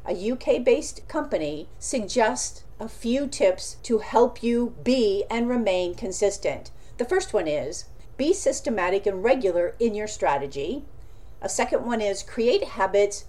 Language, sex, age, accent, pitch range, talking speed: English, female, 50-69, American, 195-270 Hz, 140 wpm